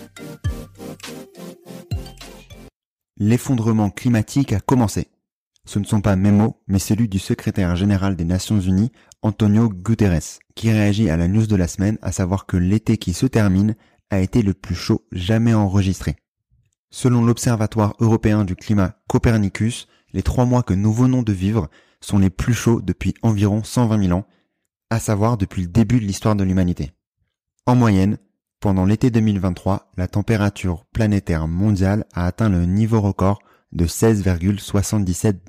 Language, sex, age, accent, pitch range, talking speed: French, male, 30-49, French, 95-115 Hz, 150 wpm